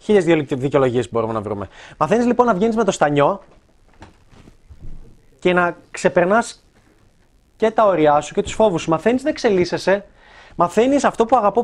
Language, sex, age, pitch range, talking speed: Greek, male, 20-39, 145-210 Hz, 160 wpm